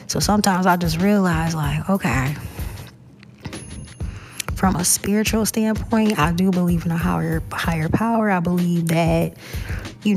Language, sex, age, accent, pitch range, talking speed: English, female, 10-29, American, 155-195 Hz, 135 wpm